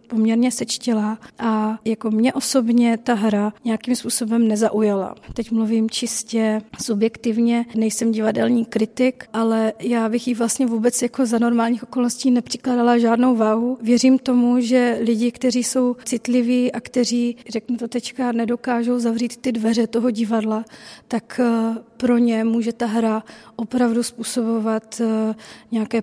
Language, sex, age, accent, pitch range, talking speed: Czech, female, 40-59, native, 225-245 Hz, 135 wpm